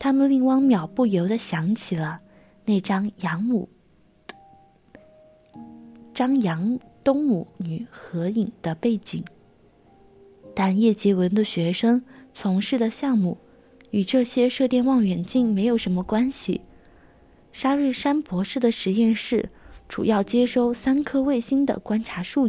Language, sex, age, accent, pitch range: Chinese, female, 20-39, native, 185-250 Hz